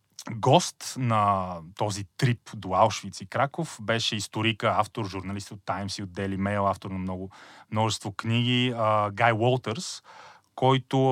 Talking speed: 145 wpm